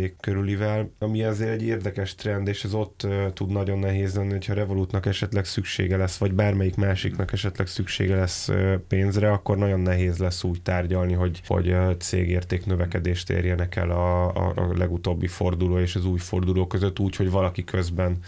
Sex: male